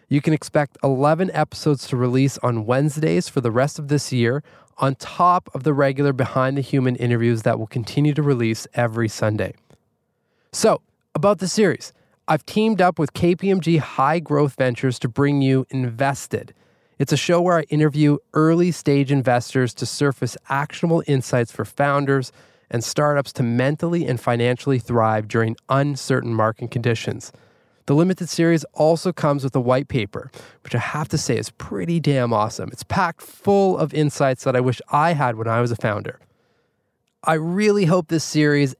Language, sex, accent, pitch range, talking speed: English, male, American, 125-155 Hz, 170 wpm